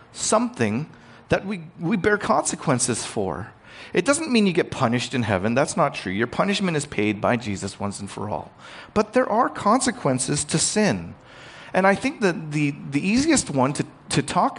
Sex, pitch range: male, 115-170 Hz